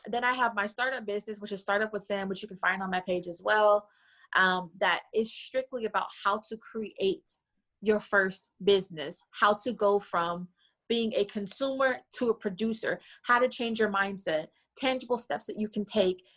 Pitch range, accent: 200-230 Hz, American